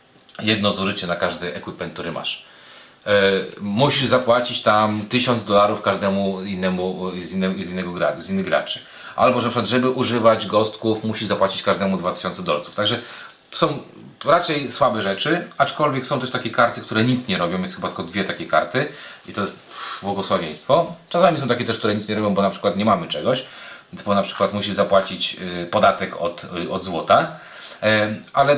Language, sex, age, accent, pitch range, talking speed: Polish, male, 30-49, native, 95-120 Hz, 165 wpm